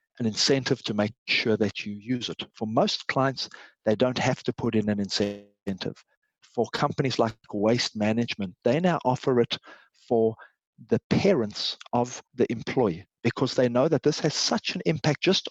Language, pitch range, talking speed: English, 110-140 Hz, 175 wpm